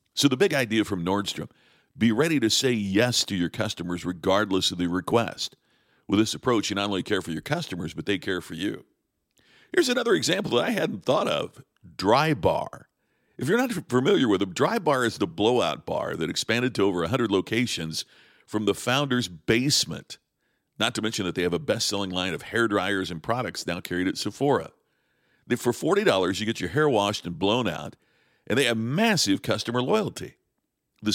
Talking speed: 195 wpm